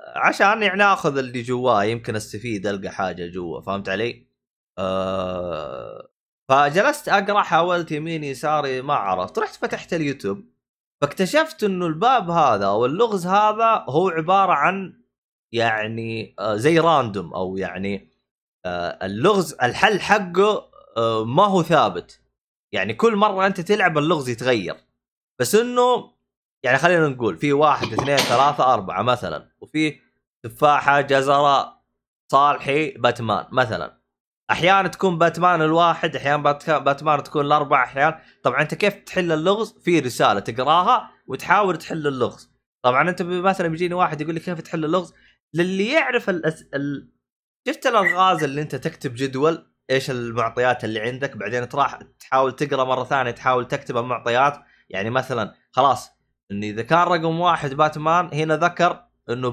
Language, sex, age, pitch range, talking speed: Arabic, male, 20-39, 125-185 Hz, 135 wpm